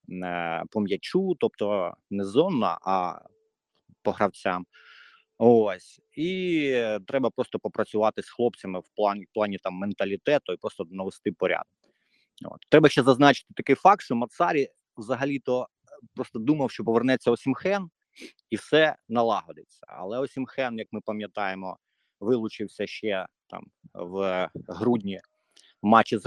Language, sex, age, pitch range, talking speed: Ukrainian, male, 30-49, 100-130 Hz, 125 wpm